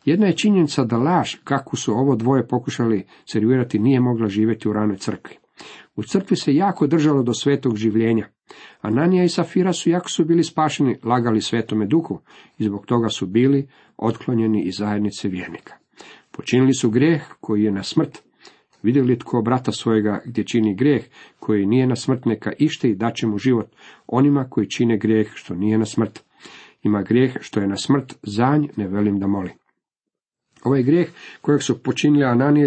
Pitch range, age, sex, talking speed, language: 110-135 Hz, 50-69, male, 175 wpm, Croatian